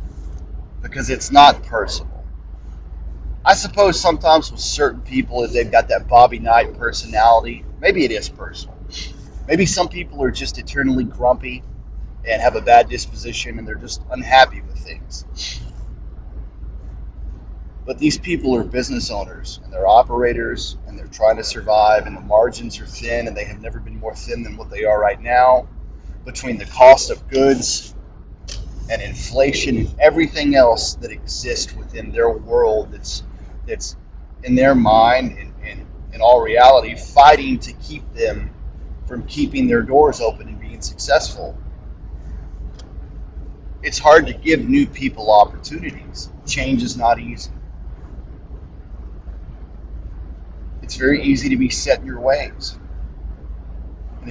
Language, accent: English, American